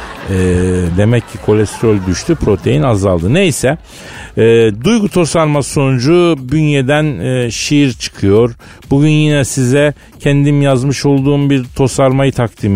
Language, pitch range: Turkish, 110-160 Hz